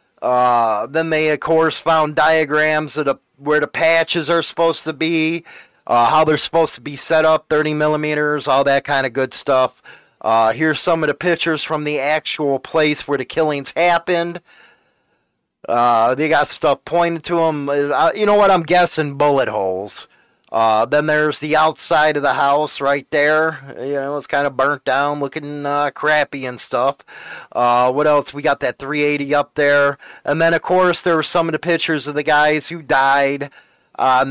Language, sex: English, male